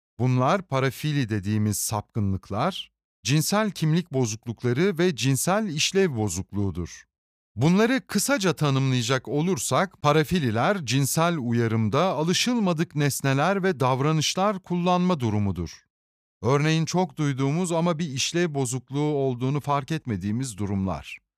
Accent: native